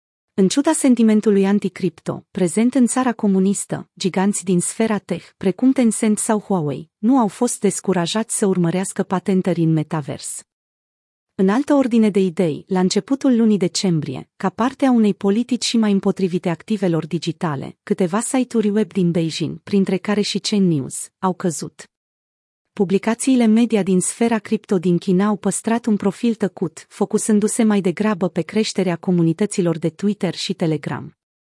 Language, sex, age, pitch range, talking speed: Romanian, female, 30-49, 180-220 Hz, 145 wpm